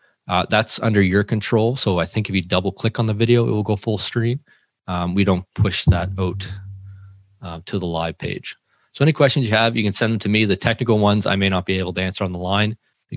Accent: American